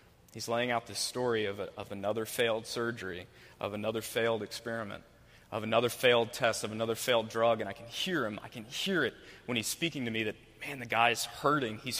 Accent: American